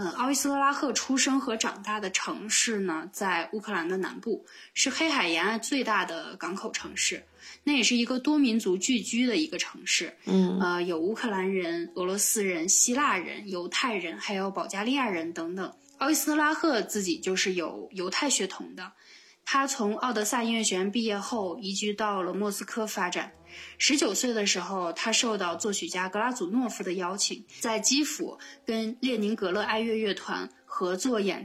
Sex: female